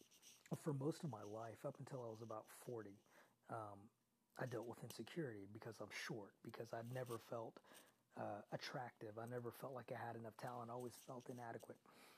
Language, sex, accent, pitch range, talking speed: English, male, American, 120-155 Hz, 180 wpm